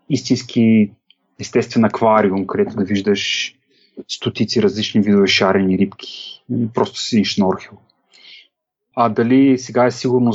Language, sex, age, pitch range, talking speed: Bulgarian, male, 30-49, 110-145 Hz, 110 wpm